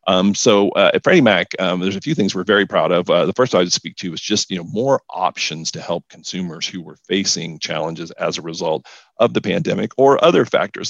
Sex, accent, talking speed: male, American, 240 wpm